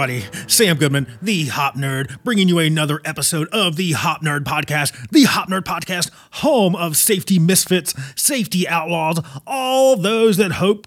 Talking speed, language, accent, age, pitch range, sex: 160 wpm, English, American, 30-49, 130-175 Hz, male